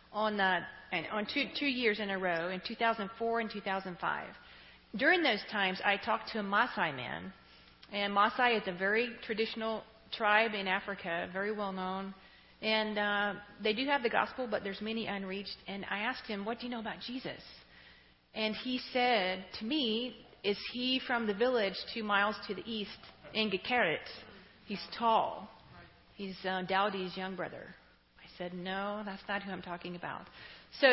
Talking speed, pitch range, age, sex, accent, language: 175 wpm, 195-230 Hz, 40-59, female, American, English